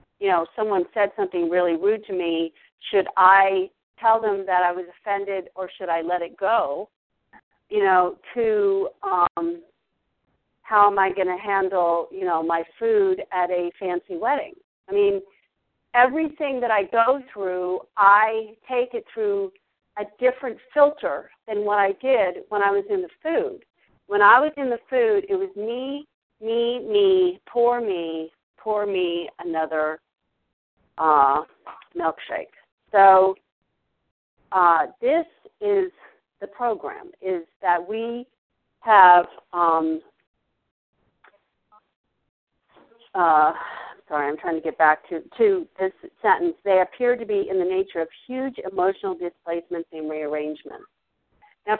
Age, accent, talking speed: 50-69, American, 140 wpm